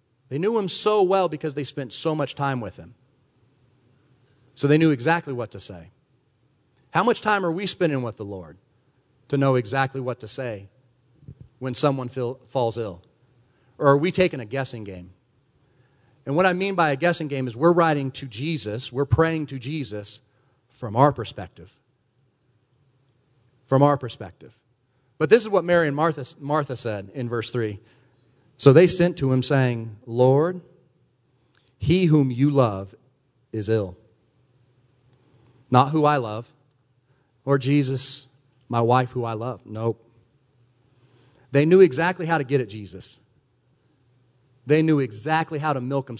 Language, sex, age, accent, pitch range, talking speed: English, male, 40-59, American, 120-140 Hz, 155 wpm